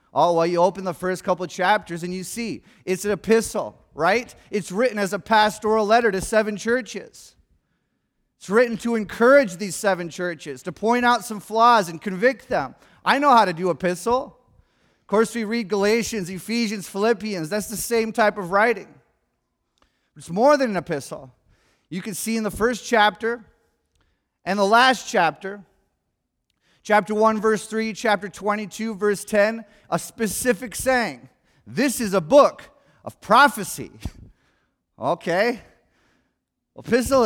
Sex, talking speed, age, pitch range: male, 150 wpm, 30-49, 180-235 Hz